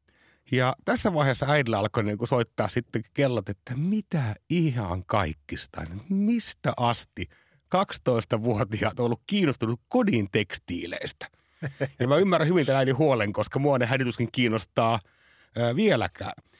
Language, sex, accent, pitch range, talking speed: Finnish, male, native, 95-140 Hz, 120 wpm